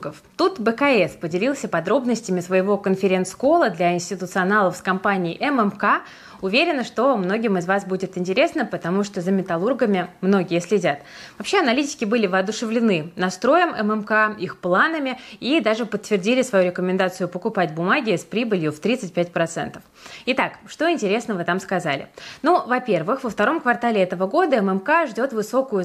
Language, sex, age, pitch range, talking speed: Russian, female, 20-39, 185-245 Hz, 135 wpm